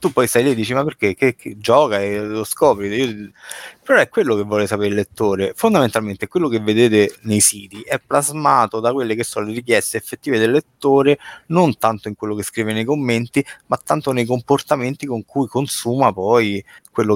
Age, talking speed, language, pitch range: 30-49, 190 wpm, Italian, 100-120 Hz